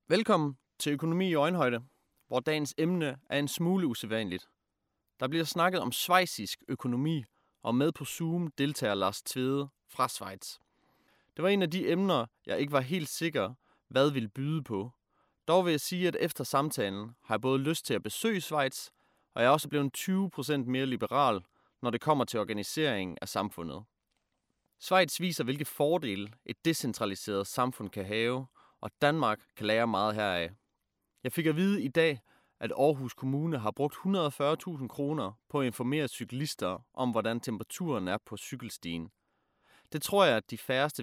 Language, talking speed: Danish, 170 wpm